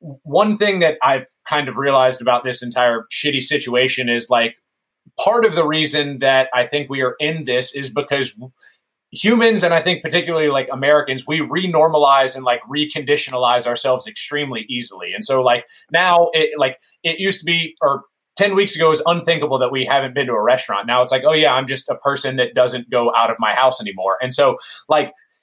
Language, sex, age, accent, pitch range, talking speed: English, male, 20-39, American, 130-160 Hz, 205 wpm